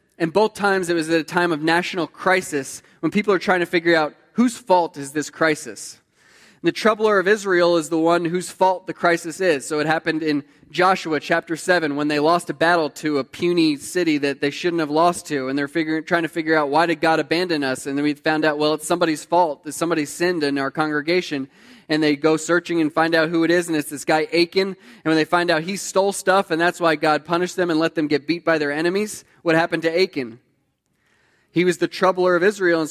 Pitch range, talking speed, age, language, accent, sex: 155-180 Hz, 240 wpm, 20-39, English, American, male